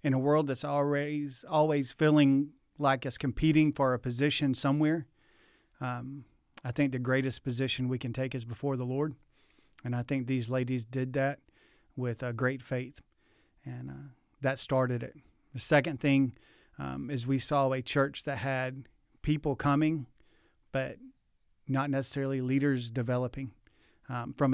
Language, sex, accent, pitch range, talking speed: English, male, American, 125-140 Hz, 155 wpm